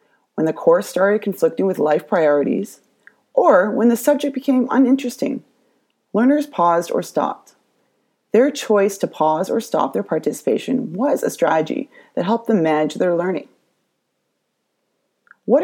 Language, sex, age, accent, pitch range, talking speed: English, female, 30-49, American, 200-265 Hz, 140 wpm